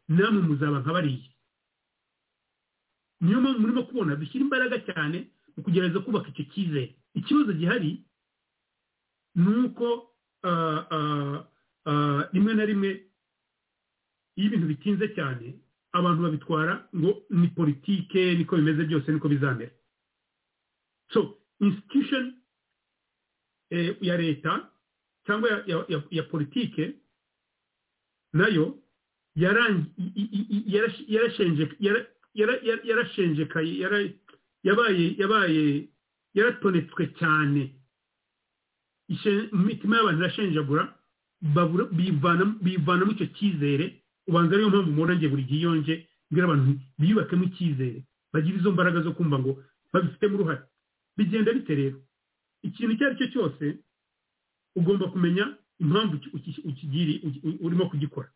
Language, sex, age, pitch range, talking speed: English, male, 50-69, 155-205 Hz, 75 wpm